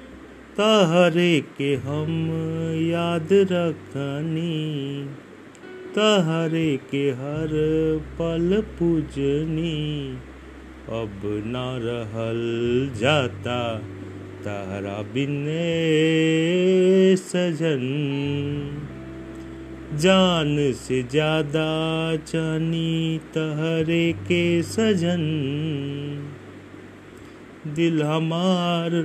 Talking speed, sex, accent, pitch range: 55 wpm, male, native, 135-170 Hz